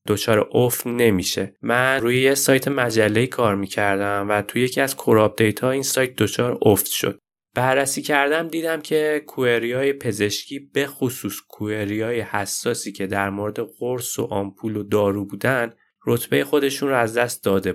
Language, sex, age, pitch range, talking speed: Persian, male, 20-39, 105-140 Hz, 155 wpm